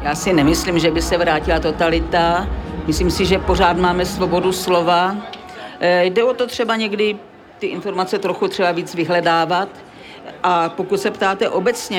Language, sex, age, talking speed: Czech, female, 50-69, 155 wpm